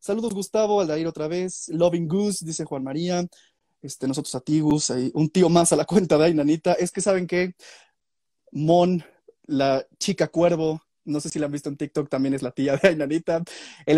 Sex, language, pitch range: male, Spanish, 150-190 Hz